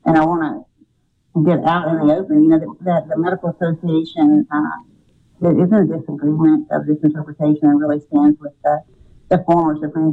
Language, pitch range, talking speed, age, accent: English, 150-175 Hz, 190 wpm, 50-69, American